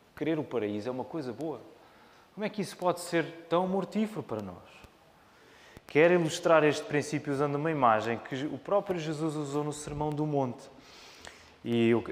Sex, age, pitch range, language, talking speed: male, 20-39, 125-170 Hz, Portuguese, 175 wpm